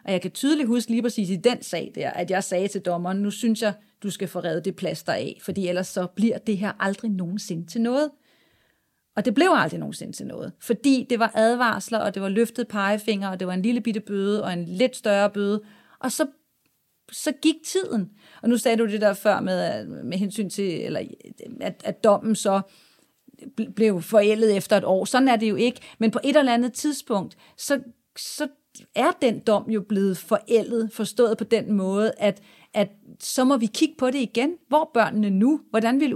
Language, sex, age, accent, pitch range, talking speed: Danish, female, 40-59, native, 200-245 Hz, 210 wpm